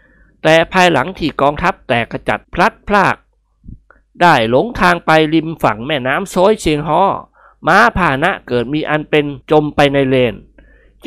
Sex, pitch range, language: male, 130-175 Hz, Thai